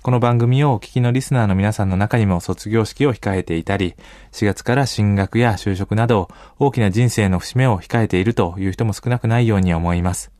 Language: Japanese